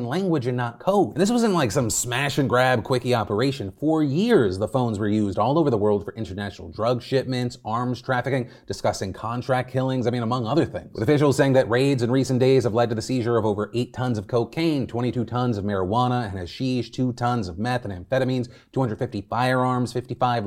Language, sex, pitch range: English, male, 120-150 Hz